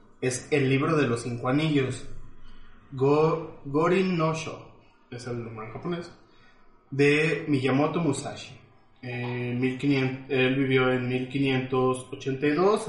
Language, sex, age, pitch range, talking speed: Spanish, male, 20-39, 125-150 Hz, 115 wpm